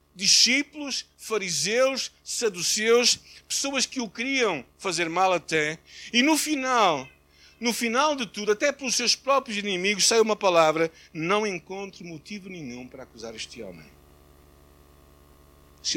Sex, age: male, 60-79